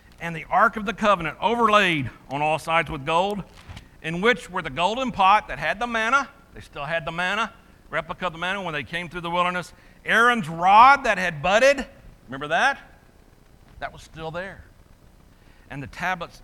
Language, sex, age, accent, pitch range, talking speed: English, male, 60-79, American, 145-210 Hz, 185 wpm